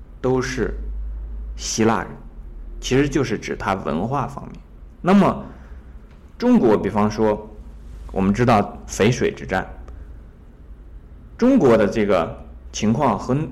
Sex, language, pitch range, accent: male, Chinese, 70-115 Hz, native